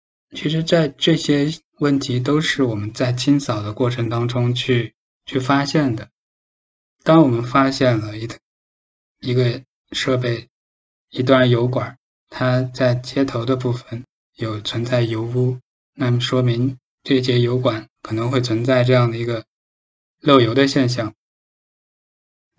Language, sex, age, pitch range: Chinese, male, 20-39, 115-135 Hz